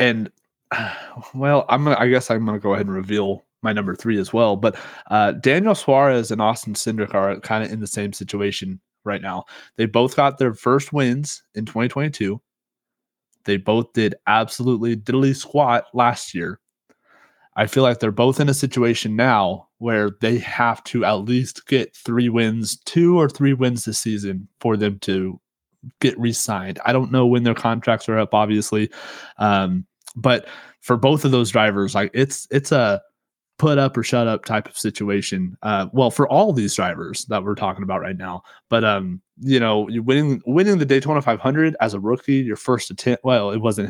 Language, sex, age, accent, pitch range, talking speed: English, male, 20-39, American, 105-135 Hz, 190 wpm